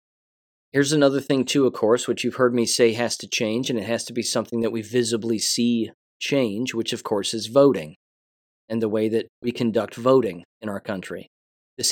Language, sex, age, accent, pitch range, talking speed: English, male, 30-49, American, 115-130 Hz, 205 wpm